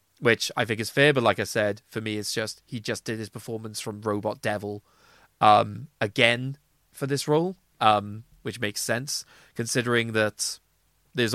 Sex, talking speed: male, 175 wpm